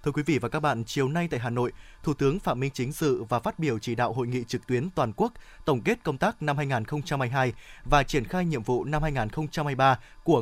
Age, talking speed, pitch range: 20-39, 240 wpm, 130-170 Hz